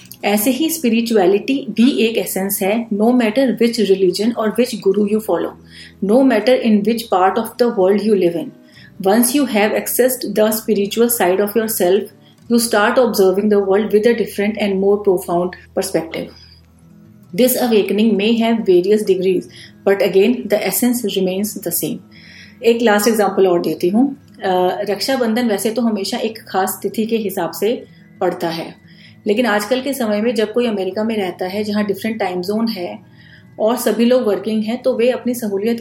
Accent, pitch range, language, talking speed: native, 190-230 Hz, Hindi, 135 wpm